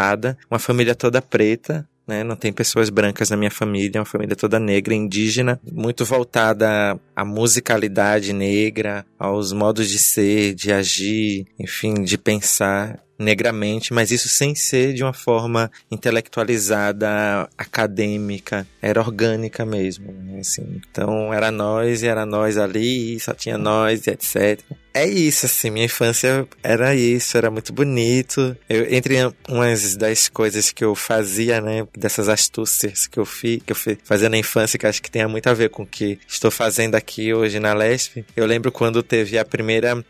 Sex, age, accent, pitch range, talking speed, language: male, 20-39, Brazilian, 105-120 Hz, 165 wpm, Portuguese